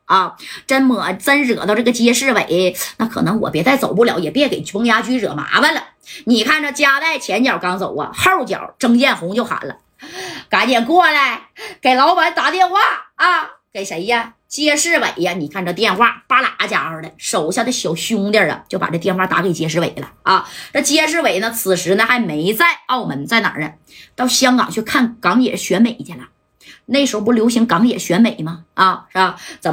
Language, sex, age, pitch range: Chinese, female, 20-39, 195-265 Hz